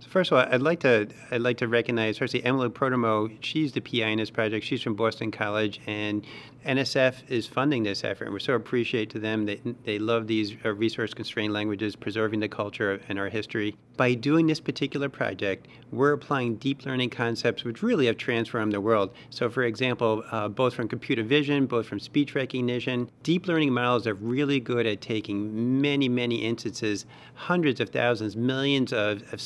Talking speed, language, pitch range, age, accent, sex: 190 wpm, English, 110-130 Hz, 40-59, American, male